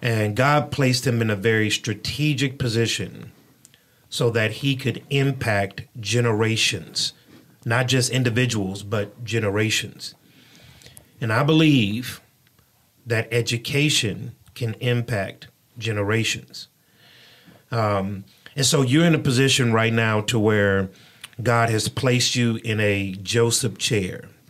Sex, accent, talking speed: male, American, 115 wpm